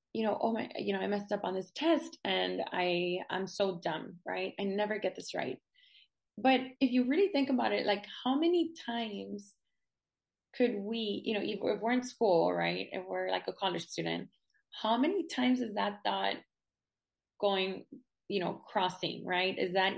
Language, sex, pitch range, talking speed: English, female, 185-230 Hz, 185 wpm